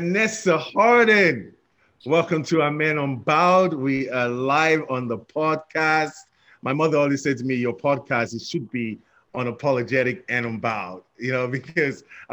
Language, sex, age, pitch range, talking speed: English, male, 30-49, 115-145 Hz, 140 wpm